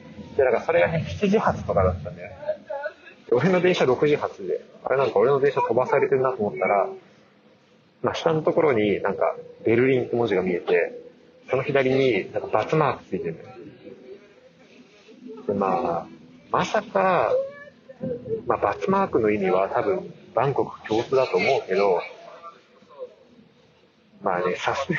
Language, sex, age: Japanese, male, 30-49